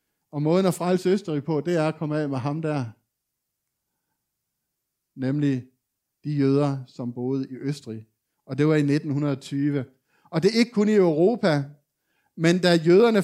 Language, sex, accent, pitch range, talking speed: Danish, male, native, 140-180 Hz, 165 wpm